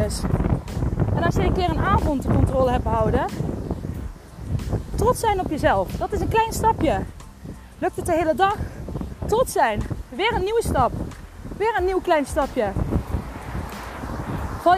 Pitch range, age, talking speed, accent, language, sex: 295-370 Hz, 20-39, 145 wpm, Dutch, Dutch, female